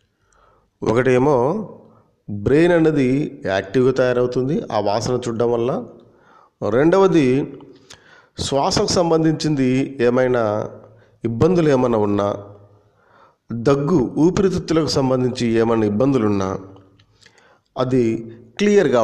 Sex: male